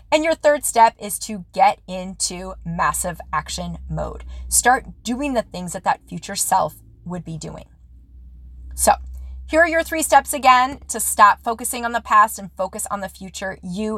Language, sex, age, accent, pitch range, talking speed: English, female, 20-39, American, 185-235 Hz, 175 wpm